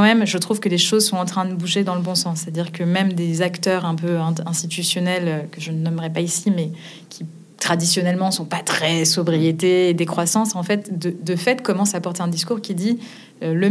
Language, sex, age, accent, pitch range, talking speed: French, female, 20-39, French, 175-210 Hz, 230 wpm